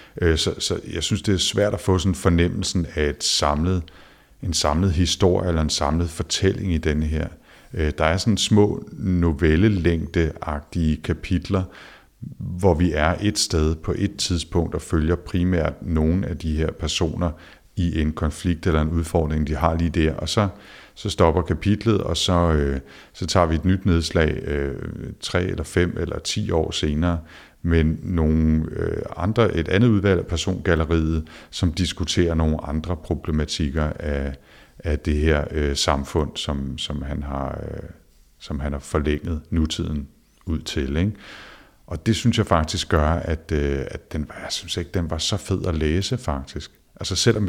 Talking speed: 160 wpm